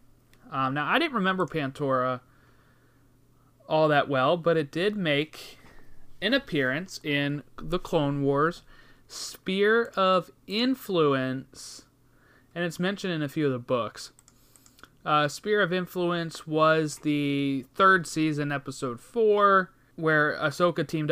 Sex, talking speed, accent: male, 125 wpm, American